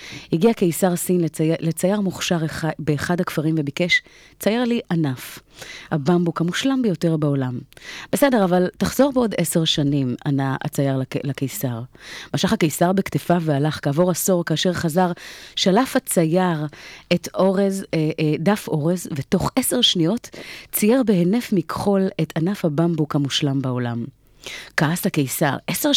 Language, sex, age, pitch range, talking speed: Hebrew, female, 30-49, 150-190 Hz, 130 wpm